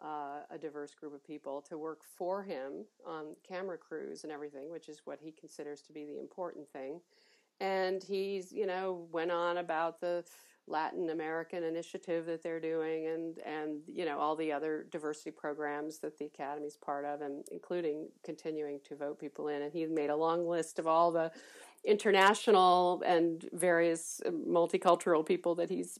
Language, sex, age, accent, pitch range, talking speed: English, female, 40-59, American, 155-190 Hz, 175 wpm